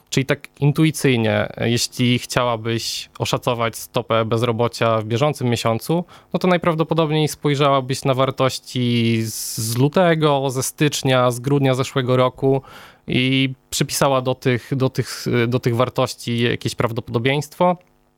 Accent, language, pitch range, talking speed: native, Polish, 115-145 Hz, 110 wpm